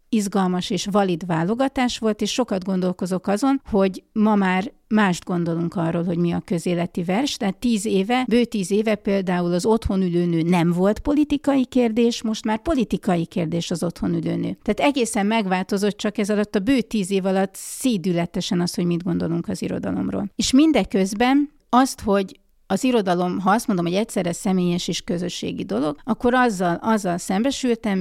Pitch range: 180-225 Hz